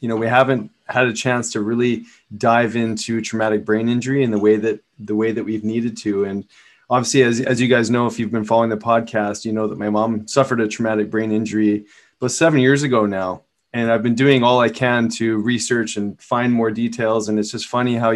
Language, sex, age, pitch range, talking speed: English, male, 20-39, 110-125 Hz, 230 wpm